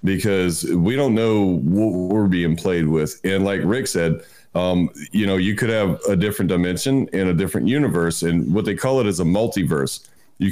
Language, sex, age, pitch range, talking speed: English, male, 30-49, 85-110 Hz, 200 wpm